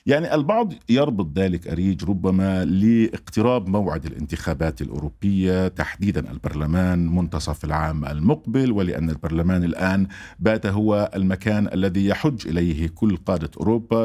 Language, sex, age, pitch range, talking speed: Arabic, male, 50-69, 90-115 Hz, 115 wpm